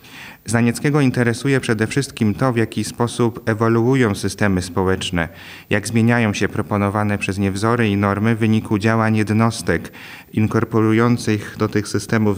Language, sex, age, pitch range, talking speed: Polish, male, 30-49, 100-115 Hz, 135 wpm